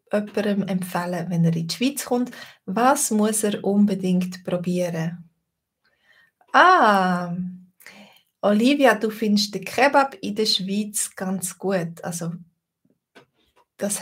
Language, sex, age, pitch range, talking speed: German, female, 20-39, 180-220 Hz, 110 wpm